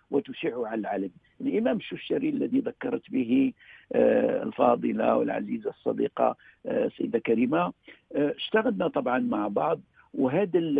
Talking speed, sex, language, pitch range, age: 100 wpm, male, Arabic, 160-260 Hz, 50-69